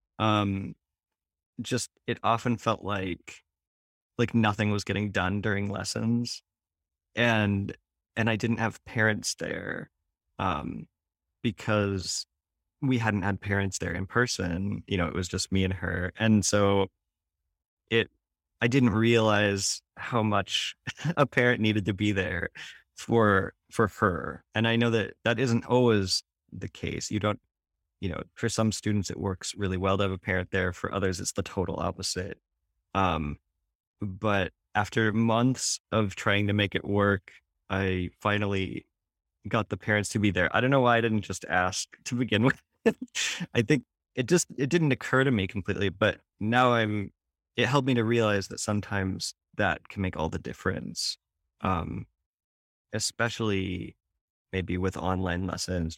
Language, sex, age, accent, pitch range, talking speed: English, male, 20-39, American, 90-115 Hz, 155 wpm